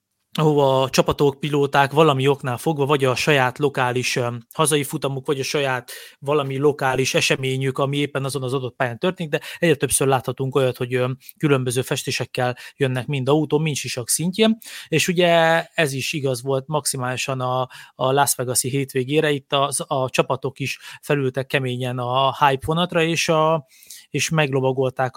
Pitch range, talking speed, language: 130-150 Hz, 155 wpm, Hungarian